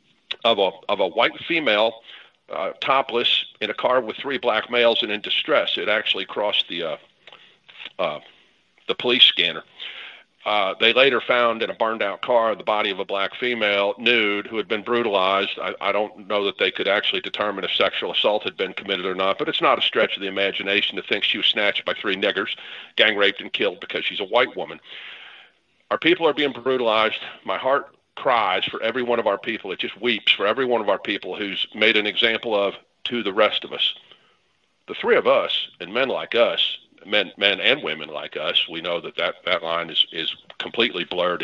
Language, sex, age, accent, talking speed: English, male, 50-69, American, 205 wpm